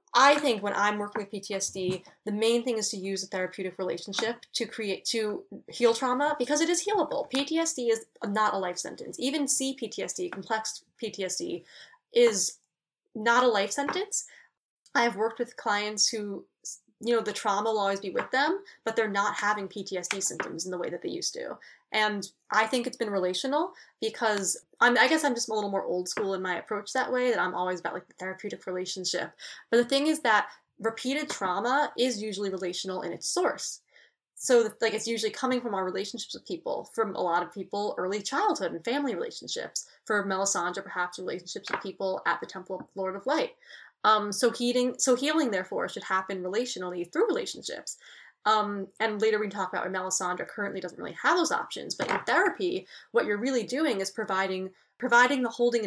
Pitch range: 195-255 Hz